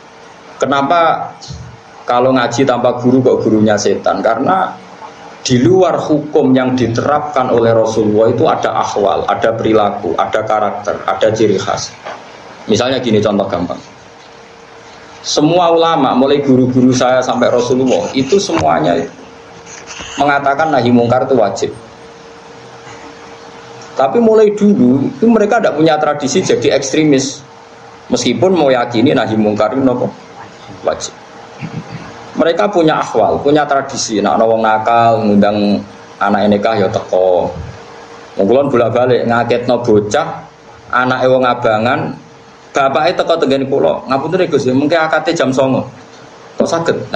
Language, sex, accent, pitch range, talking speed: Indonesian, male, native, 115-160 Hz, 115 wpm